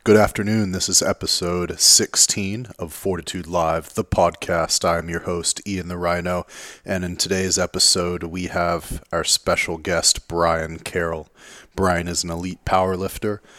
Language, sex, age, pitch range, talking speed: English, male, 30-49, 80-90 Hz, 145 wpm